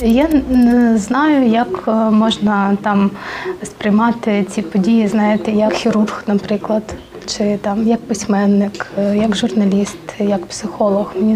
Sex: female